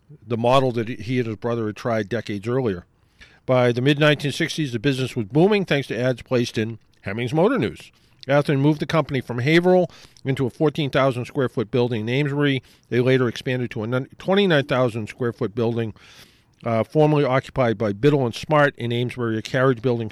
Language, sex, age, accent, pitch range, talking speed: English, male, 50-69, American, 115-145 Hz, 165 wpm